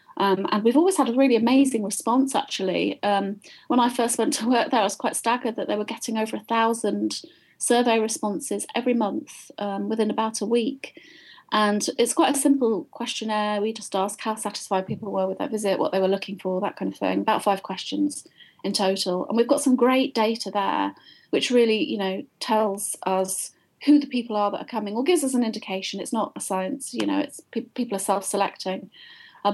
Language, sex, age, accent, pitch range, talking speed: English, female, 30-49, British, 205-255 Hz, 215 wpm